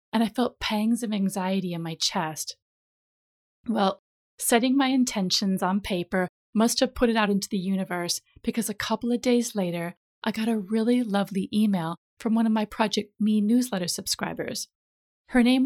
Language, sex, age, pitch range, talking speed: English, female, 30-49, 195-245 Hz, 175 wpm